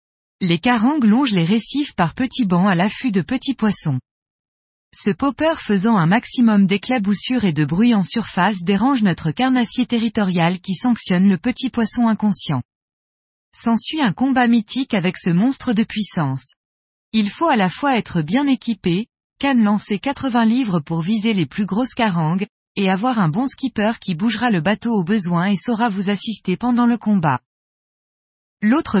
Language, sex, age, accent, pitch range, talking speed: French, female, 20-39, French, 185-245 Hz, 165 wpm